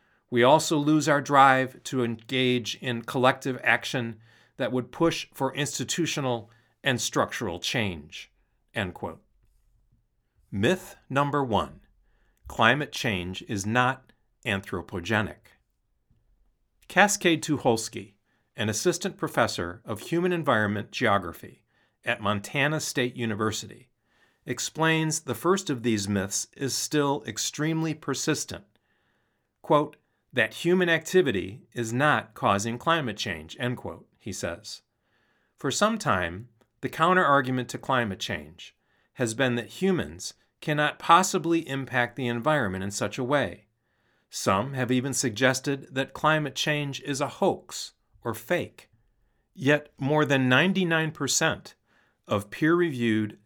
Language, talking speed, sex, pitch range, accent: English, 115 wpm, male, 115-150 Hz, American